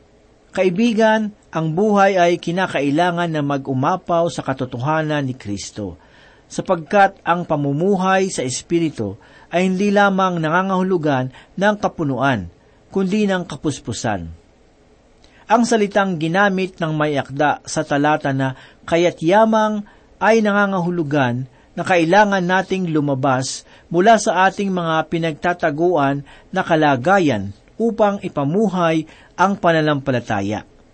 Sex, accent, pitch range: male, native, 145-190 Hz